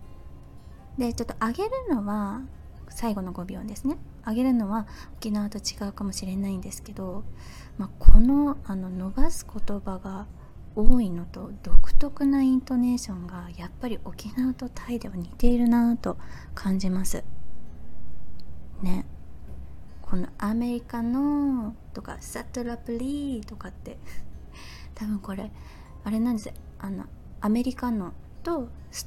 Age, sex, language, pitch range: 20-39, female, Japanese, 175-235 Hz